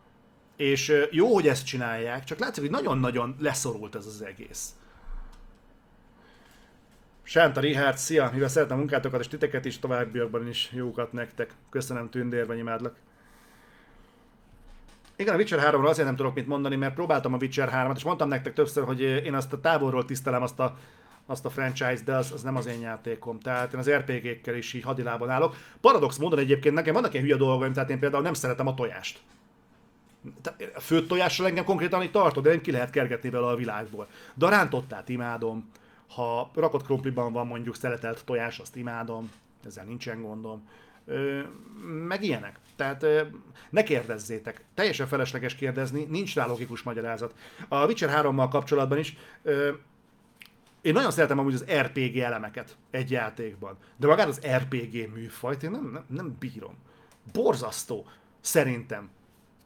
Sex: male